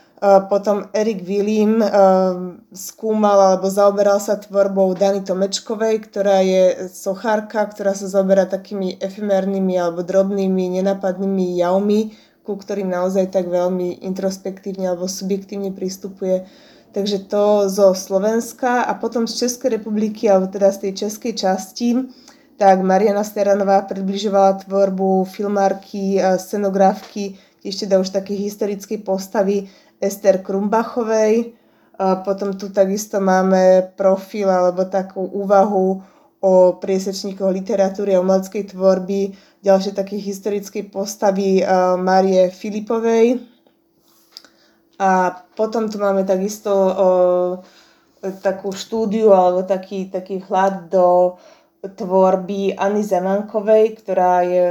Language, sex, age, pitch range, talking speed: Slovak, female, 20-39, 190-205 Hz, 110 wpm